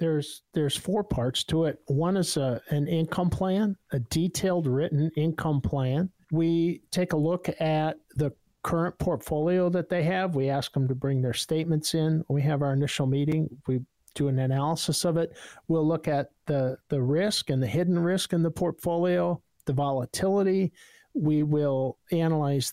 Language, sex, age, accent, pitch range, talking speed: English, male, 50-69, American, 140-175 Hz, 170 wpm